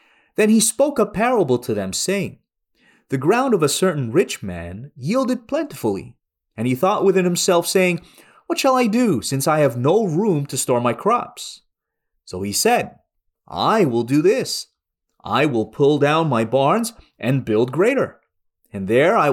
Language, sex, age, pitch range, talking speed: English, male, 30-49, 130-220 Hz, 170 wpm